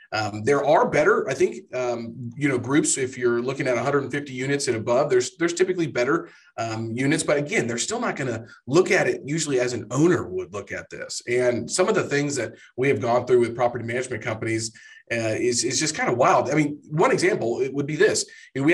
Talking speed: 235 wpm